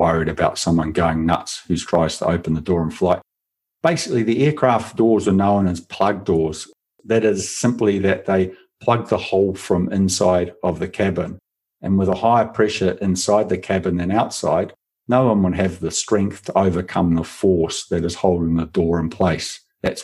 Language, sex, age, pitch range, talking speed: English, male, 50-69, 85-110 Hz, 190 wpm